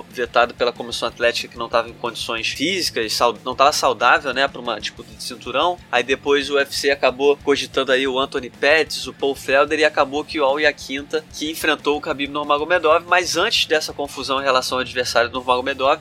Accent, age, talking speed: Brazilian, 20-39, 200 wpm